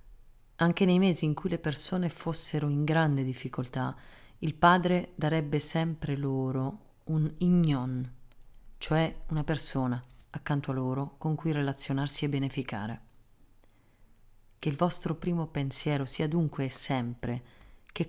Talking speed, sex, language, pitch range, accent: 130 wpm, female, Italian, 125-155 Hz, native